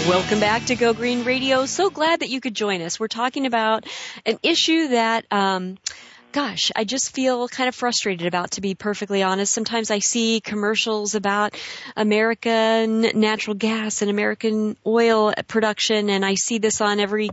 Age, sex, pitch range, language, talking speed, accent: 40-59, female, 195-230 Hz, English, 175 wpm, American